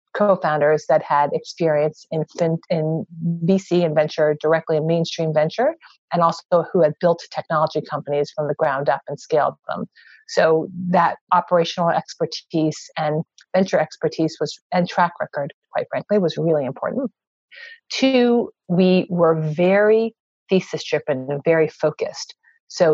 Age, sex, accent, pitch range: 40-59, female, American, 155-190 Hz